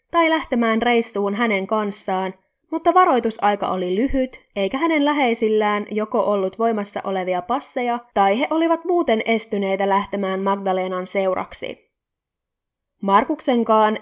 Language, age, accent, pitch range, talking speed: Finnish, 20-39, native, 200-255 Hz, 110 wpm